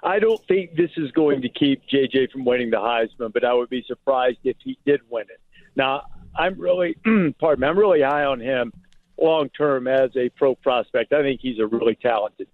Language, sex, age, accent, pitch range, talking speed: English, male, 50-69, American, 130-160 Hz, 215 wpm